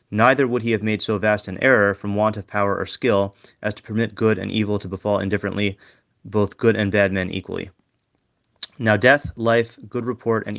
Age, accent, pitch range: 30-49, American, 100-115 Hz